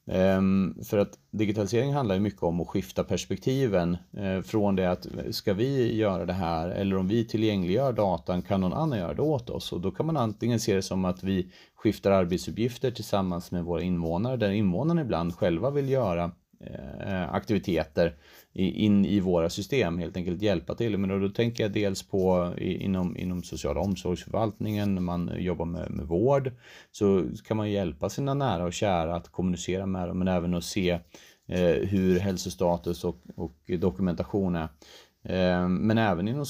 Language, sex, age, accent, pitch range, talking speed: Swedish, male, 30-49, native, 90-110 Hz, 165 wpm